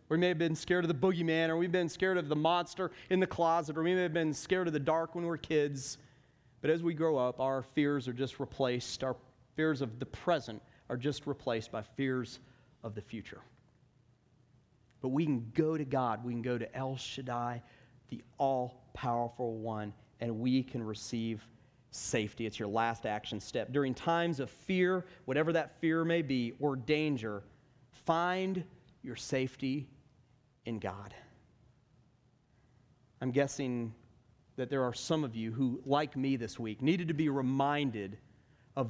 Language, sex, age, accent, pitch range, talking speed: English, male, 40-59, American, 120-160 Hz, 175 wpm